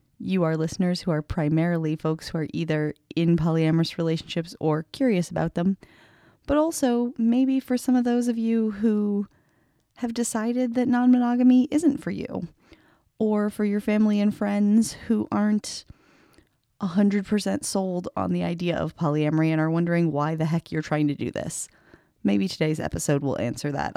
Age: 30-49